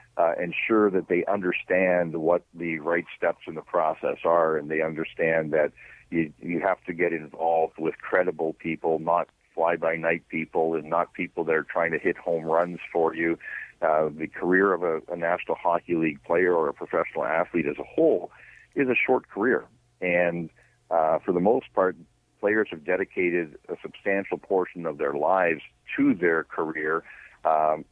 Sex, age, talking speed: male, 50-69, 175 wpm